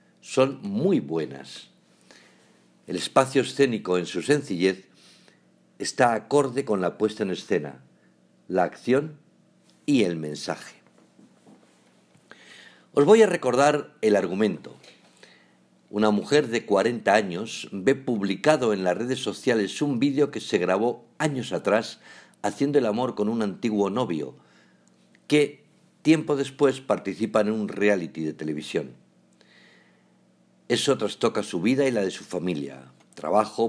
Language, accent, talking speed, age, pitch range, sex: Spanish, Spanish, 125 wpm, 50-69, 105-155 Hz, male